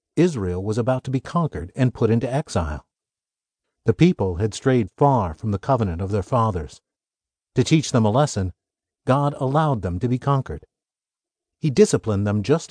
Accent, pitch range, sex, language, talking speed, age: American, 105-145 Hz, male, English, 170 wpm, 50-69